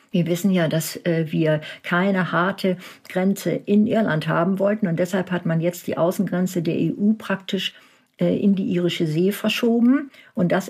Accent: German